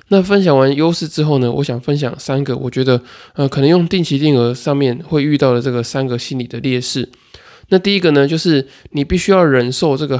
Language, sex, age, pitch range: Chinese, male, 20-39, 125-145 Hz